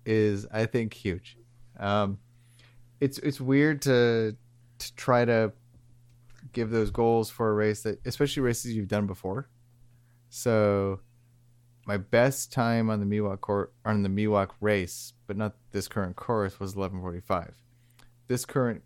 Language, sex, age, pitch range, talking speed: English, male, 30-49, 100-120 Hz, 145 wpm